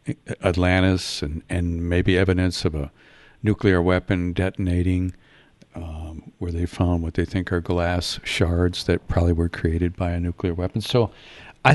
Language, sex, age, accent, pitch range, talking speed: English, male, 60-79, American, 90-110 Hz, 155 wpm